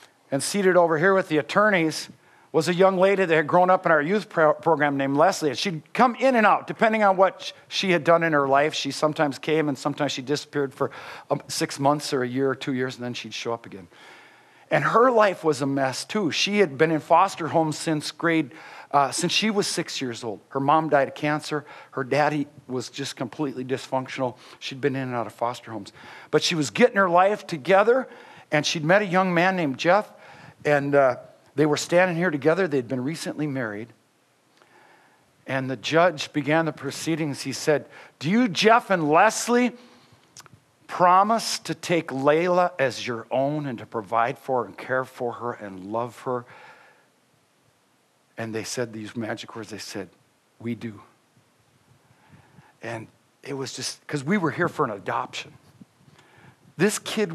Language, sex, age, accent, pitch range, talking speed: English, male, 50-69, American, 130-175 Hz, 185 wpm